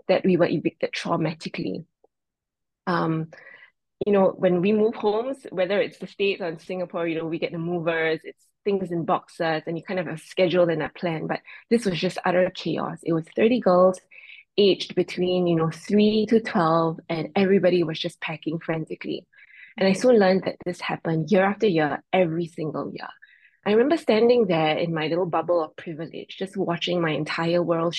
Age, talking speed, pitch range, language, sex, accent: 20-39, 190 wpm, 165-210 Hz, English, female, Malaysian